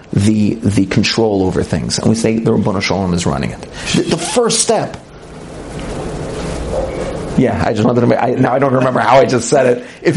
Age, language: 40-59, English